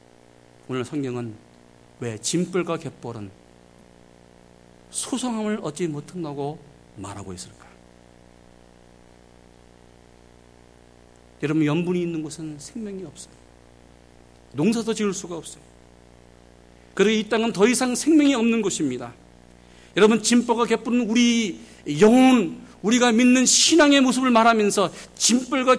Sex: male